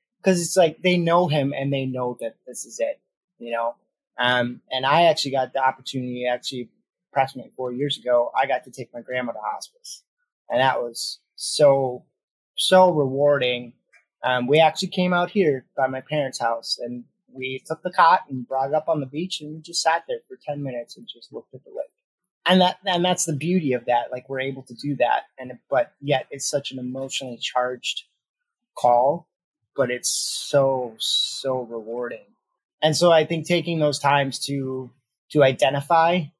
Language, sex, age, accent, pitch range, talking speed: English, male, 30-49, American, 125-160 Hz, 190 wpm